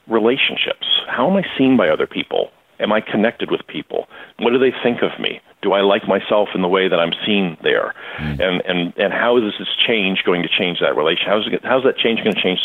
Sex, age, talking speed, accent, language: male, 40-59, 235 wpm, American, English